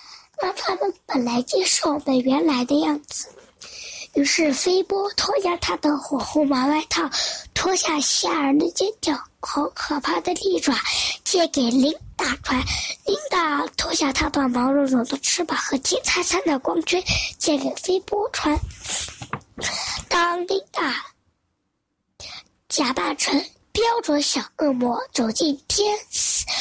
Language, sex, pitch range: Chinese, male, 280-365 Hz